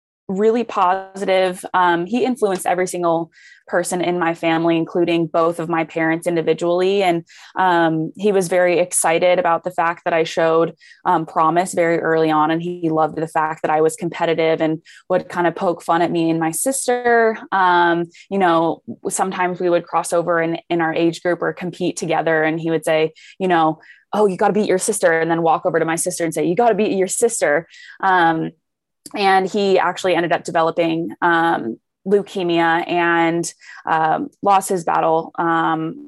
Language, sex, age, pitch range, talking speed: English, female, 20-39, 165-185 Hz, 185 wpm